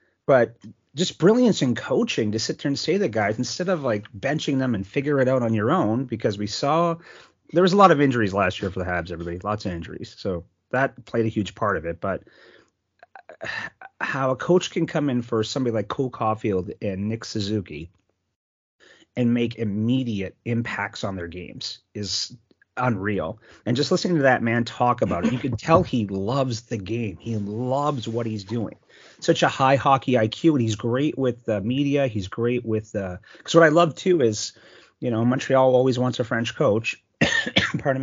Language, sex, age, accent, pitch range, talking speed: English, male, 30-49, American, 105-135 Hz, 200 wpm